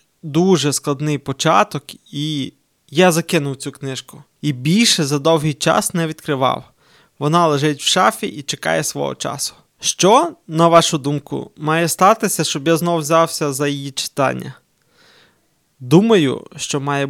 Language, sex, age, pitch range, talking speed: Ukrainian, male, 20-39, 140-165 Hz, 135 wpm